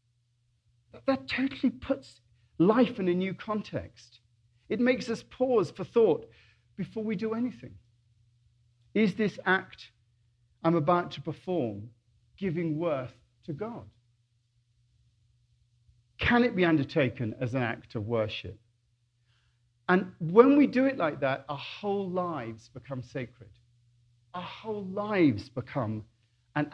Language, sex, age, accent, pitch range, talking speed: English, male, 50-69, British, 120-185 Hz, 125 wpm